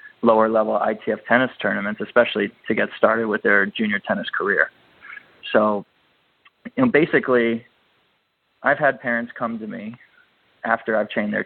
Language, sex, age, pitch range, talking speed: English, male, 20-39, 115-130 Hz, 145 wpm